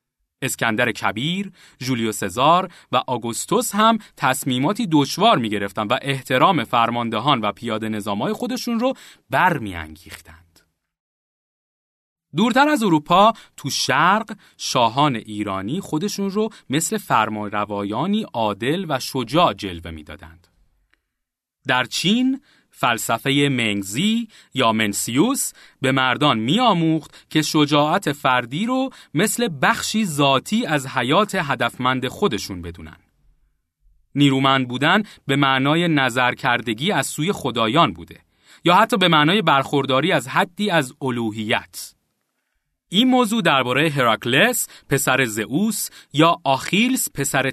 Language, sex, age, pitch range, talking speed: Persian, male, 30-49, 115-180 Hz, 105 wpm